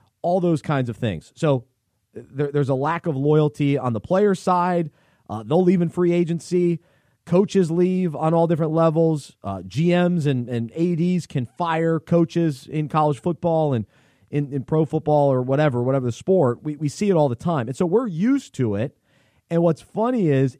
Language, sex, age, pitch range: English, male, 30-49, 135-200 Hz